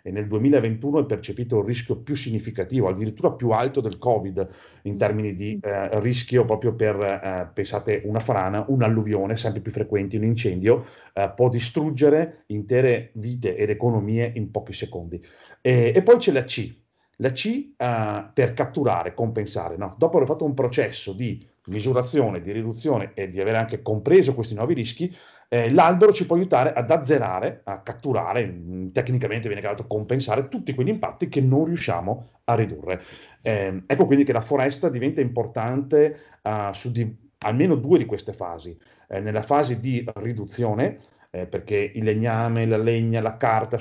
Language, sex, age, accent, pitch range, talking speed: Italian, male, 40-59, native, 105-130 Hz, 165 wpm